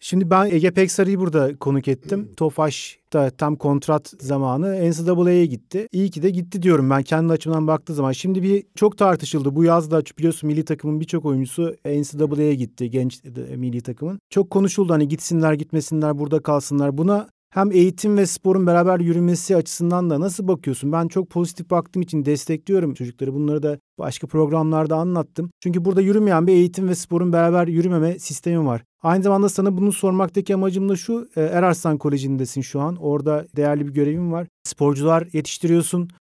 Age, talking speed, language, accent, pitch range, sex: 40-59, 165 wpm, Turkish, native, 150-180 Hz, male